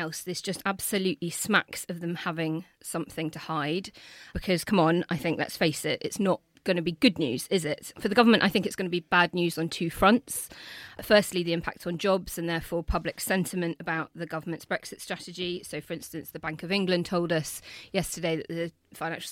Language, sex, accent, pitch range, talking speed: English, female, British, 170-195 Hz, 215 wpm